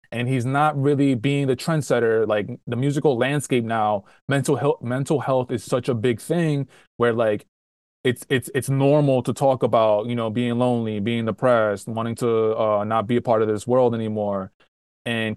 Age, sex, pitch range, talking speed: 20-39, male, 110-135 Hz, 185 wpm